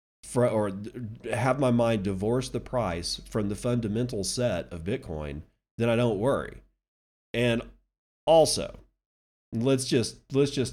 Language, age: English, 40-59